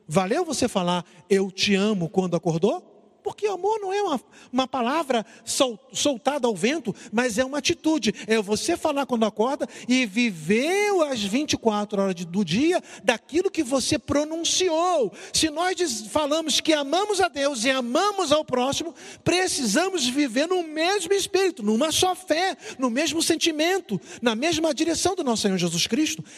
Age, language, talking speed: 50-69, Portuguese, 155 wpm